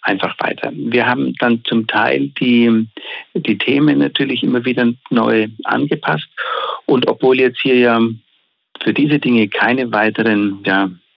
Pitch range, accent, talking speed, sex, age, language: 105-120 Hz, German, 135 wpm, male, 60-79, German